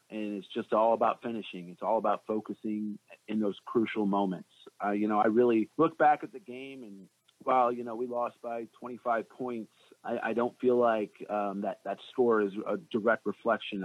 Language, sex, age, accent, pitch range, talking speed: English, male, 30-49, American, 100-120 Hz, 205 wpm